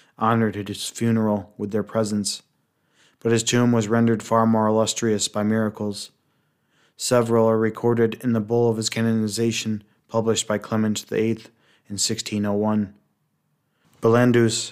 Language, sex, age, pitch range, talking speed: English, male, 20-39, 105-115 Hz, 145 wpm